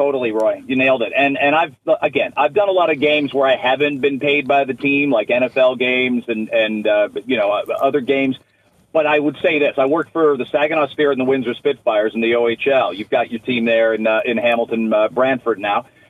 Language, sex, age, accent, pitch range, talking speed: English, male, 40-59, American, 130-170 Hz, 235 wpm